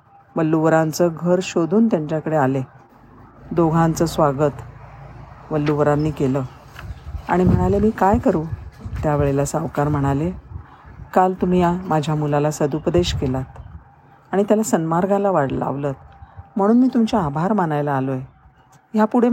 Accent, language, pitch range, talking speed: native, Marathi, 150-185 Hz, 125 wpm